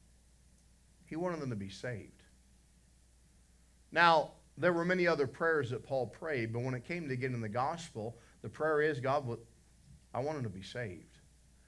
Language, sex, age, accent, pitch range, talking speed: English, male, 50-69, American, 115-155 Hz, 170 wpm